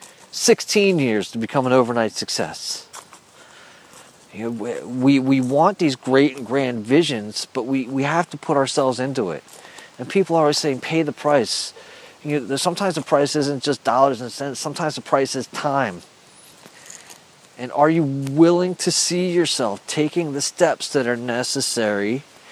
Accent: American